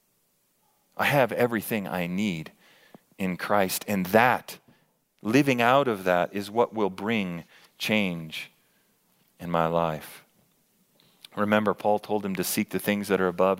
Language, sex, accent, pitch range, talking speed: English, male, American, 90-115 Hz, 140 wpm